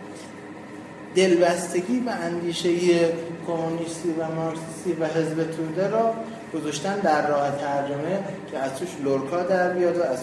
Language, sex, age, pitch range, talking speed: Persian, male, 20-39, 130-185 Hz, 130 wpm